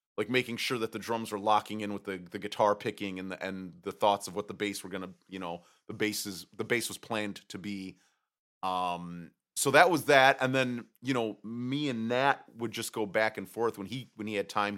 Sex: male